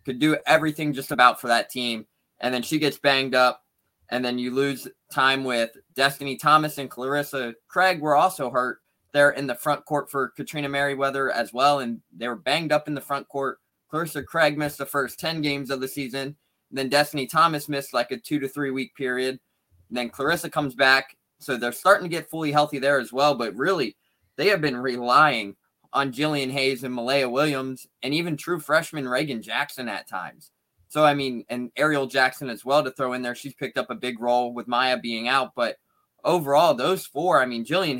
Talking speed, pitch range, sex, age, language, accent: 210 wpm, 125-145 Hz, male, 20-39, English, American